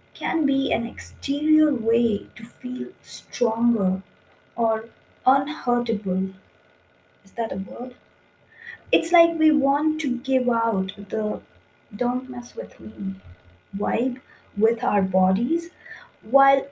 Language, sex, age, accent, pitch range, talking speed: English, female, 20-39, Indian, 205-260 Hz, 110 wpm